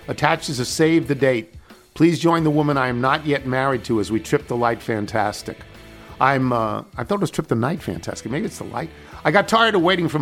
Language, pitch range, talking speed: English, 110-145 Hz, 245 wpm